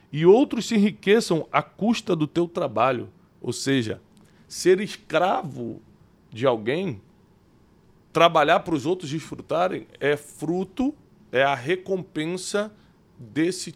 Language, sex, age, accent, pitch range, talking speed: Portuguese, male, 20-39, Brazilian, 125-180 Hz, 115 wpm